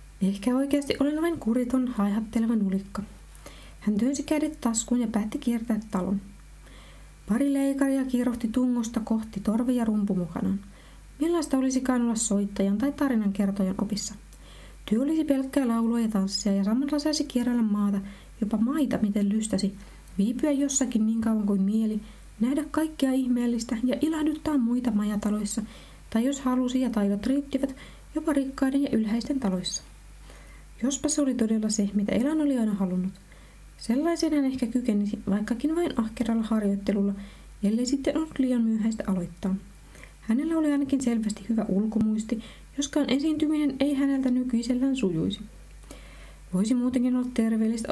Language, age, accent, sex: Finnish, 20-39, native, female